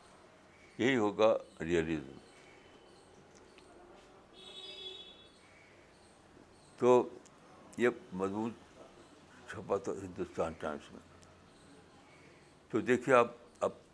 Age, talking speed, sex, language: 60-79, 65 wpm, male, Urdu